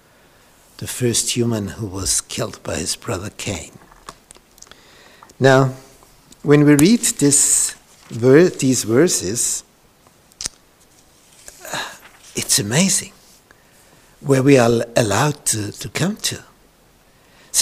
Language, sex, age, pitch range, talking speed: English, male, 60-79, 125-170 Hz, 100 wpm